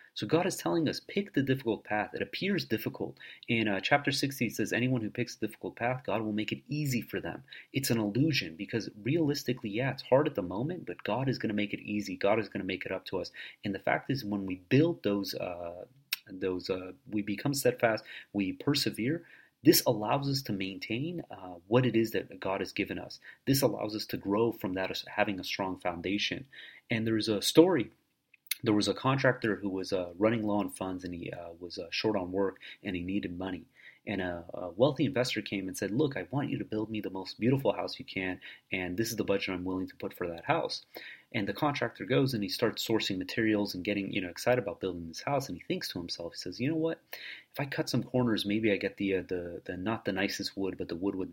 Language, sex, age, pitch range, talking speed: English, male, 30-49, 95-125 Hz, 245 wpm